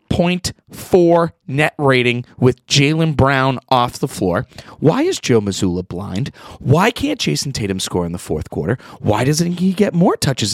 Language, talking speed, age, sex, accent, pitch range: English, 160 wpm, 30-49, male, American, 100-155 Hz